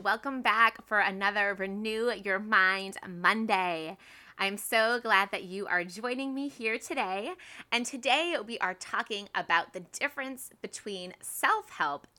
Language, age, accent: English, 20-39, American